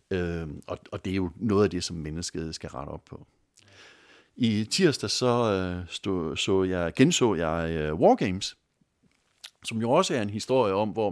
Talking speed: 165 wpm